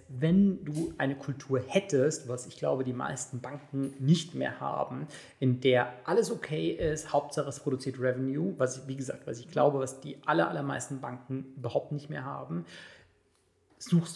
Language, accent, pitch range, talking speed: German, German, 125-140 Hz, 170 wpm